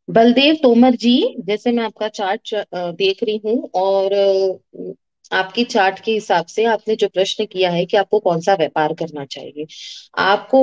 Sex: female